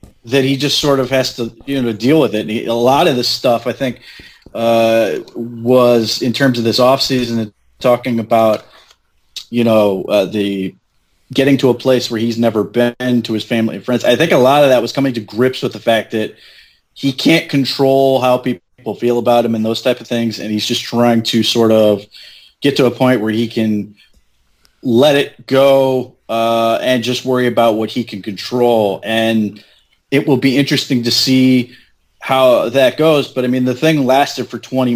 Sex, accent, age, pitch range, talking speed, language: male, American, 30-49, 115-125 Hz, 205 wpm, English